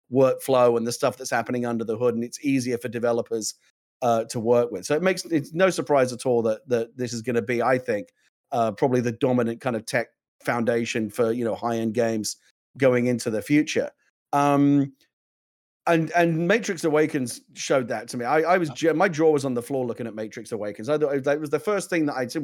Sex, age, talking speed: male, 40-59, 225 wpm